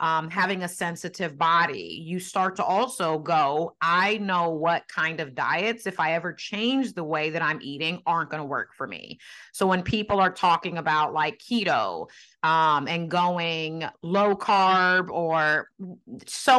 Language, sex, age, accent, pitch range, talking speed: English, female, 30-49, American, 165-205 Hz, 165 wpm